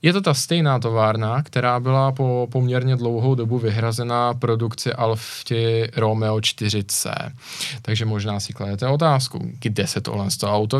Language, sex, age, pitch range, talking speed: Czech, male, 20-39, 115-150 Hz, 150 wpm